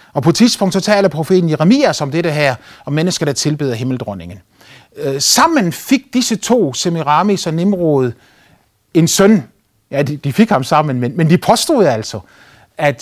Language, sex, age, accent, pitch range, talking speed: Danish, male, 30-49, native, 135-205 Hz, 155 wpm